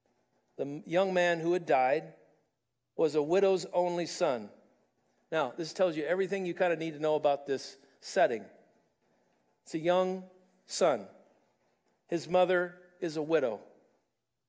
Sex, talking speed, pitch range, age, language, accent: male, 140 wpm, 155-195 Hz, 50-69, English, American